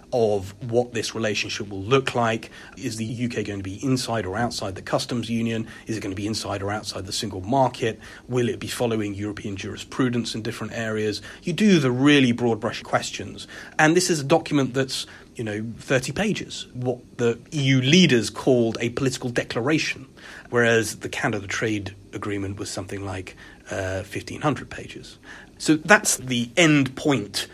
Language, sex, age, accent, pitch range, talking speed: English, male, 30-49, British, 105-125 Hz, 175 wpm